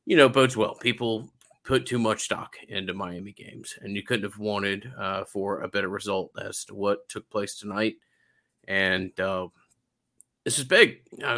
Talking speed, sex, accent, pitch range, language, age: 180 wpm, male, American, 95-115 Hz, English, 30-49